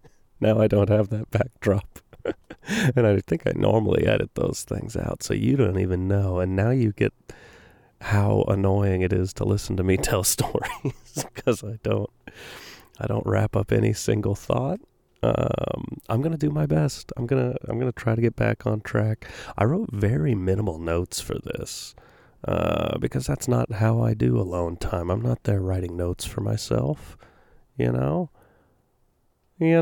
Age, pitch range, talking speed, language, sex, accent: 30-49, 95-125 Hz, 180 wpm, English, male, American